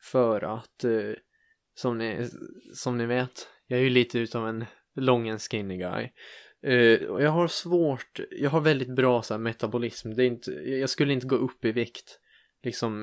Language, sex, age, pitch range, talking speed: Swedish, male, 20-39, 115-140 Hz, 185 wpm